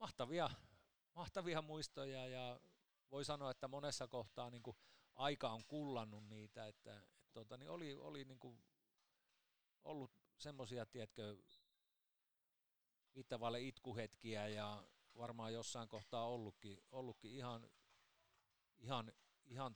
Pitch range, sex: 100-125 Hz, male